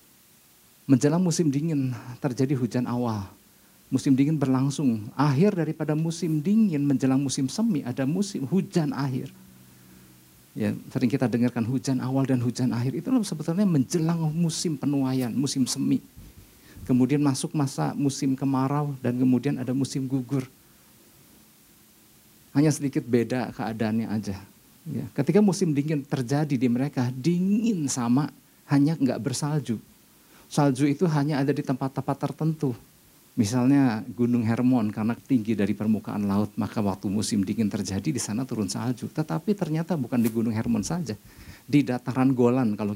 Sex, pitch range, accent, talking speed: male, 120-150 Hz, native, 135 wpm